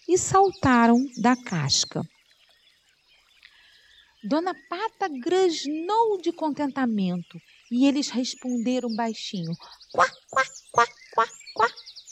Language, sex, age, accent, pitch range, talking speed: Portuguese, female, 40-59, Brazilian, 220-360 Hz, 90 wpm